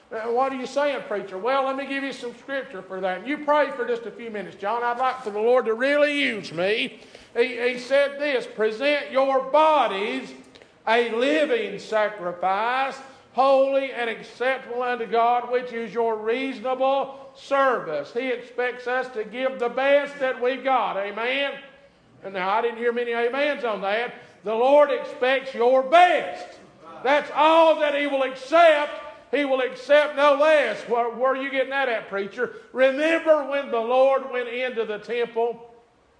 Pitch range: 235-275 Hz